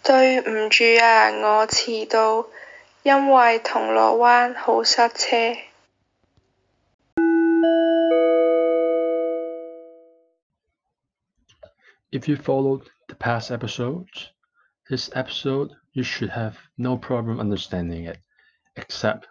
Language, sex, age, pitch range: English, male, 20-39, 100-165 Hz